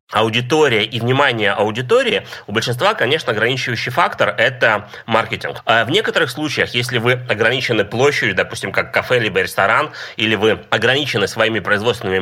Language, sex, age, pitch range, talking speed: Russian, male, 30-49, 110-135 Hz, 140 wpm